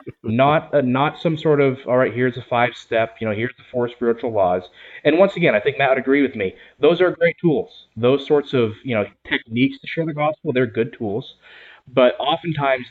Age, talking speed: 20-39, 220 wpm